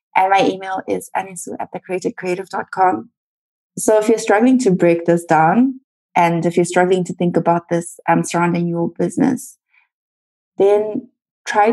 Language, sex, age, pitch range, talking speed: English, female, 20-39, 175-205 Hz, 150 wpm